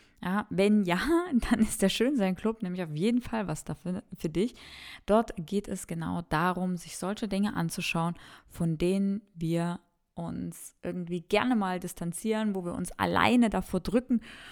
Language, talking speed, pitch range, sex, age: German, 155 wpm, 180-220 Hz, female, 20-39